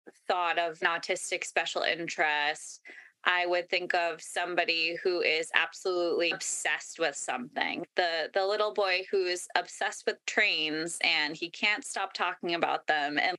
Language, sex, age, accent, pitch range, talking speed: English, female, 20-39, American, 170-210 Hz, 150 wpm